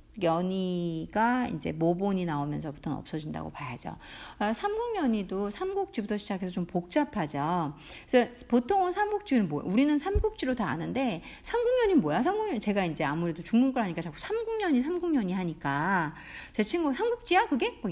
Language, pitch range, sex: Korean, 175-290 Hz, female